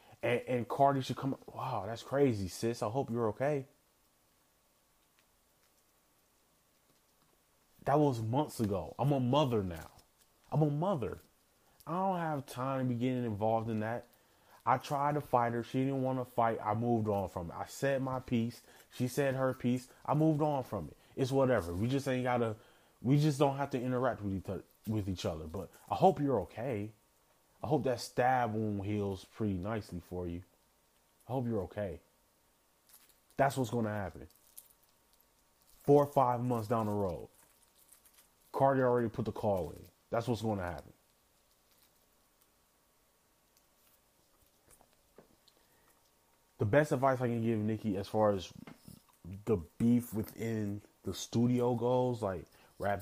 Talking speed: 155 wpm